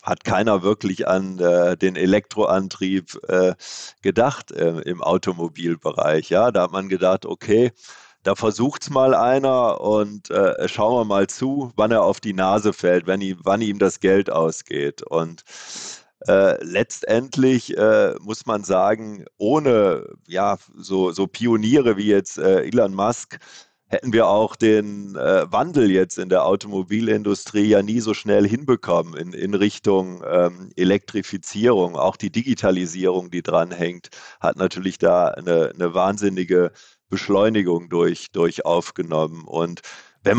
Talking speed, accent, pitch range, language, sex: 145 wpm, German, 95-115 Hz, German, male